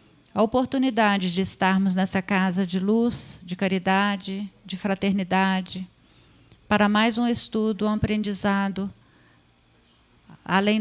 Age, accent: 50-69, Brazilian